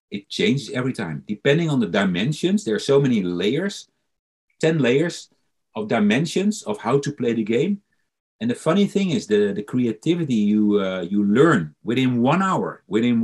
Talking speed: 175 wpm